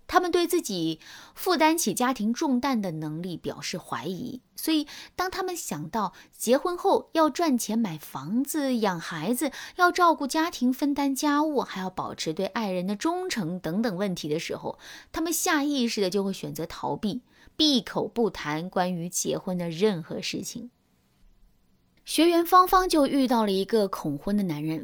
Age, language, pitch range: 20-39, Chinese, 185-270 Hz